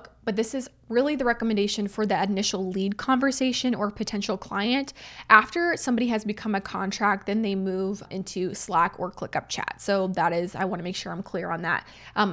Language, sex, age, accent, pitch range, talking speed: English, female, 20-39, American, 190-230 Hz, 195 wpm